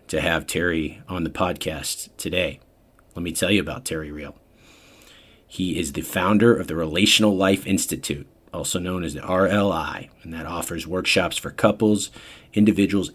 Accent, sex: American, male